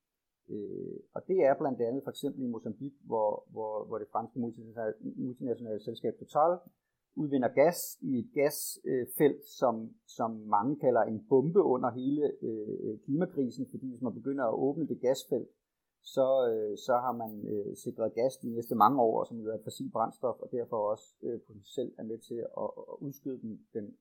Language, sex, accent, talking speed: Danish, male, native, 175 wpm